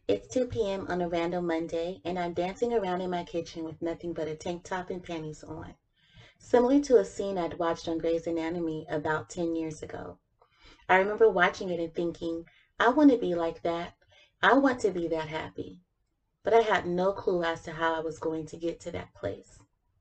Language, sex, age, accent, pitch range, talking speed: English, female, 30-49, American, 160-190 Hz, 210 wpm